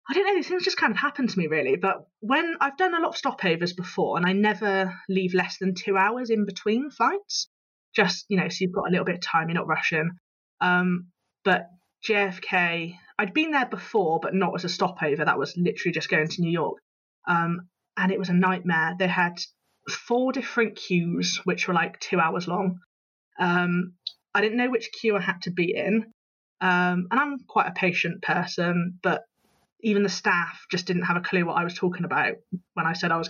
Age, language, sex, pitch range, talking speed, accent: 20-39, English, female, 175-200 Hz, 215 wpm, British